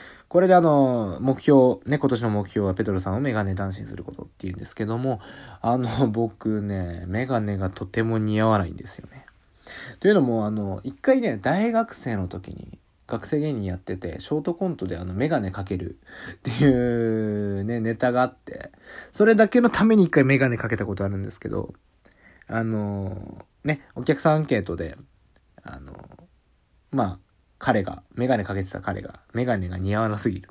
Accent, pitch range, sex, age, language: native, 95-135 Hz, male, 20-39, Japanese